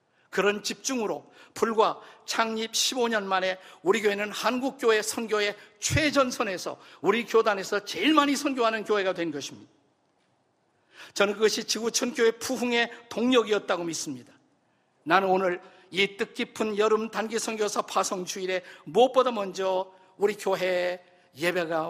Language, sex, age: Korean, male, 50-69